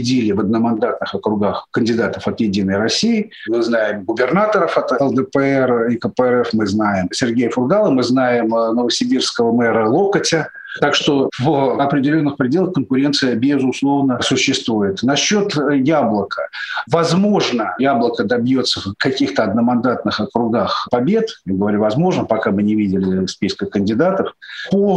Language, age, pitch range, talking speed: Russian, 40-59, 115-150 Hz, 125 wpm